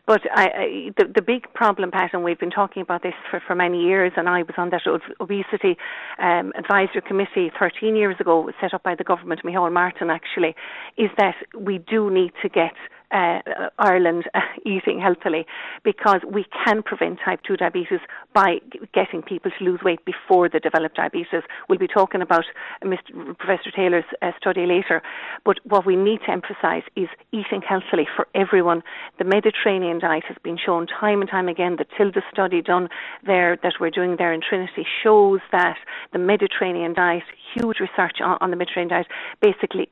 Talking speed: 180 wpm